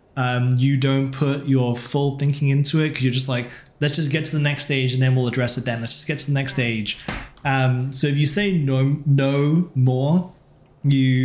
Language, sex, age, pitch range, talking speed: English, male, 20-39, 125-140 Hz, 225 wpm